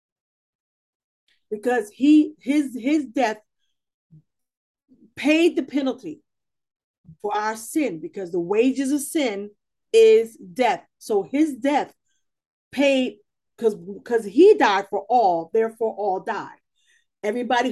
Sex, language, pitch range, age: female, English, 205-285 Hz, 40-59